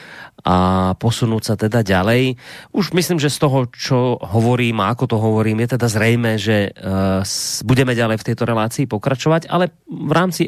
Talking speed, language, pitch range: 180 wpm, Slovak, 110-140 Hz